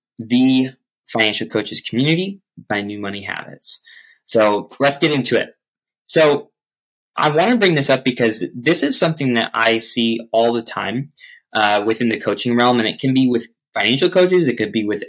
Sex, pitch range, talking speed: male, 100-140 Hz, 185 wpm